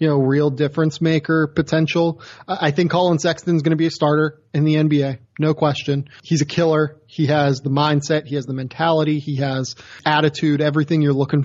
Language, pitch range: English, 145-175 Hz